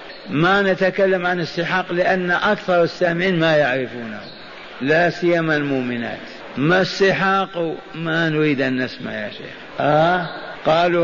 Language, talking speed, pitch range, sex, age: Arabic, 120 wpm, 145-180 Hz, male, 50-69